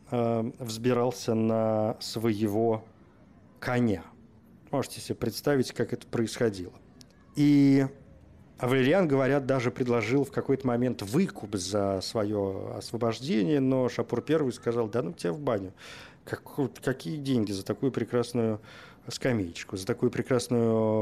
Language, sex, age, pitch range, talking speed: Russian, male, 40-59, 110-135 Hz, 115 wpm